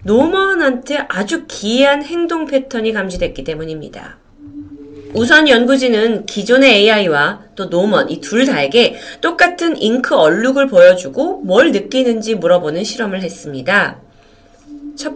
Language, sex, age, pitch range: Korean, female, 30-49, 170-270 Hz